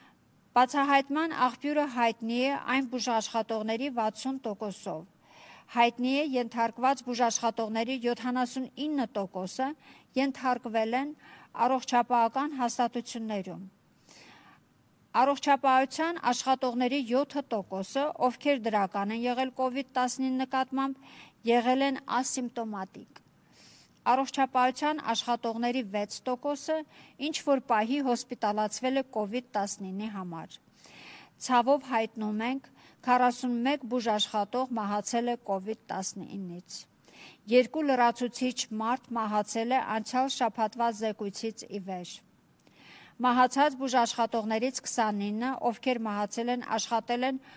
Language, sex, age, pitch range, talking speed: English, female, 50-69, 220-260 Hz, 75 wpm